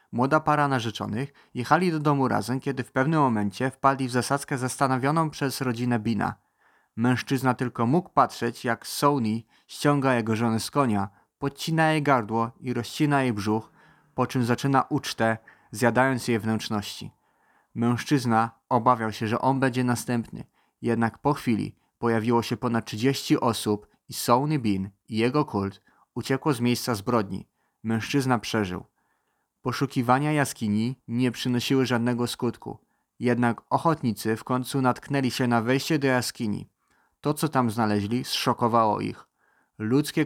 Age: 30-49